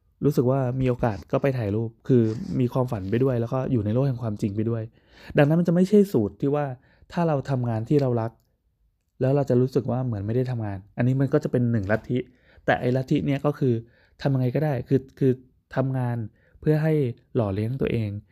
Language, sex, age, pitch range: Thai, male, 20-39, 110-130 Hz